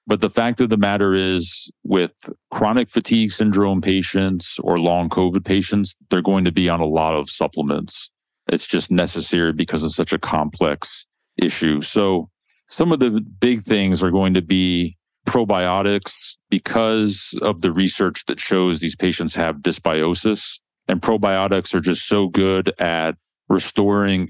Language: English